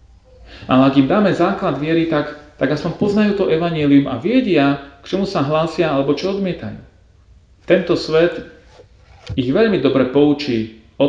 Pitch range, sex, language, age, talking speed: 100-155 Hz, male, Slovak, 40-59, 150 wpm